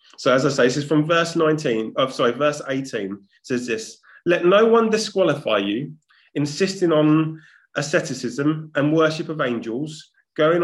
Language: English